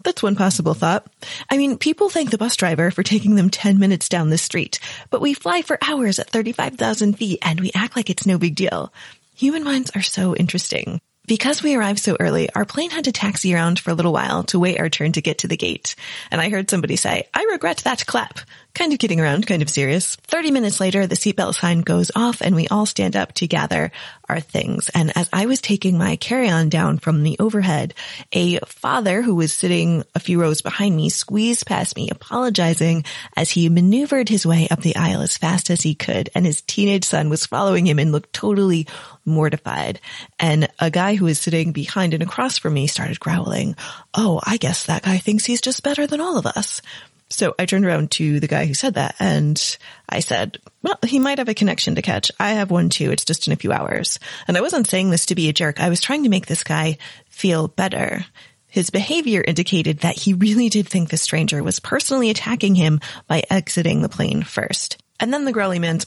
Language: English